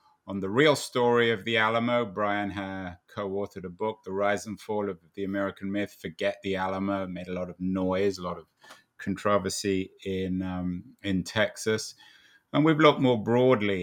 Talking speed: 180 wpm